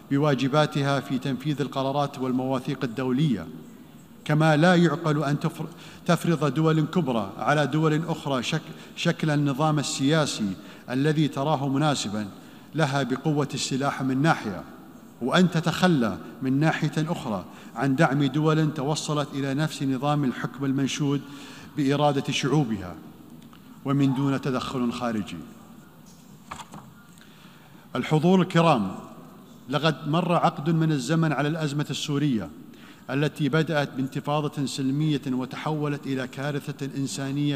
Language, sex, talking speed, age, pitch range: Arabic, male, 105 wpm, 50-69, 135-155 Hz